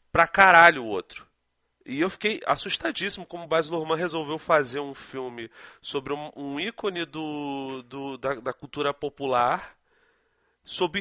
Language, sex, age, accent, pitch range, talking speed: Portuguese, male, 30-49, Brazilian, 115-160 Hz, 130 wpm